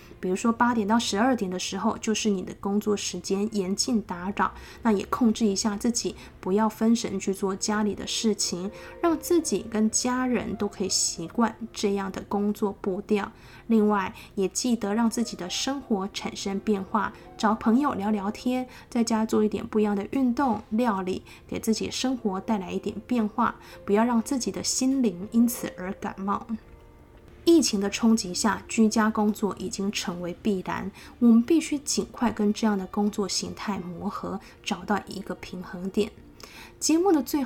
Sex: female